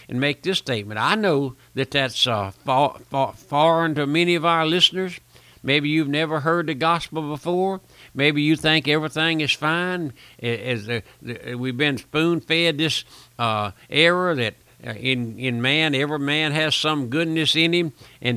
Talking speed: 170 wpm